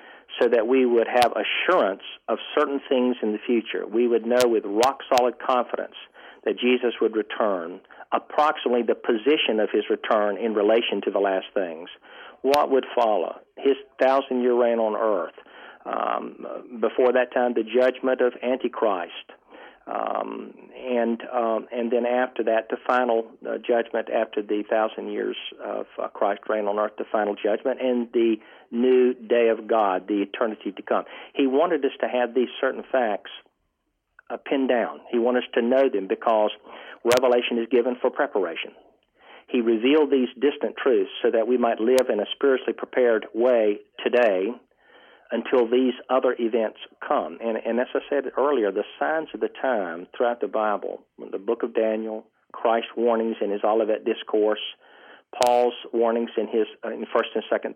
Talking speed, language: 165 wpm, English